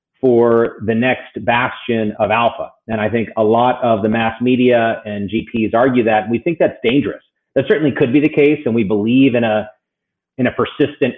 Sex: male